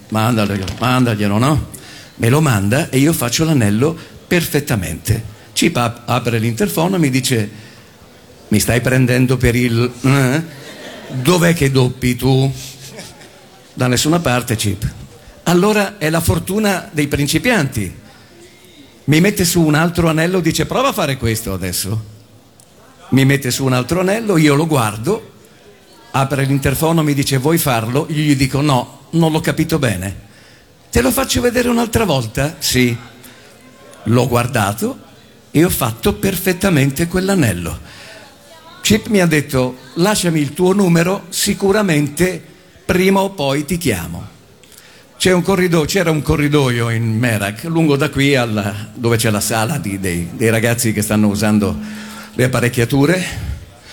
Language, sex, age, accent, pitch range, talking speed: Italian, male, 50-69, native, 115-165 Hz, 140 wpm